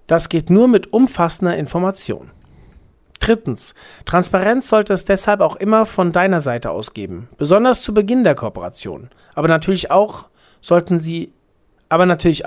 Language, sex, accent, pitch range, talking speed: German, male, German, 145-200 Hz, 140 wpm